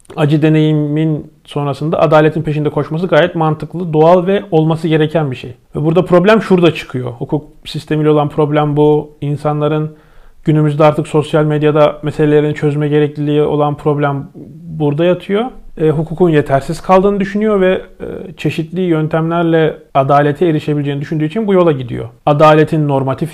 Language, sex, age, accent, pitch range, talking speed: Turkish, male, 40-59, native, 140-165 Hz, 140 wpm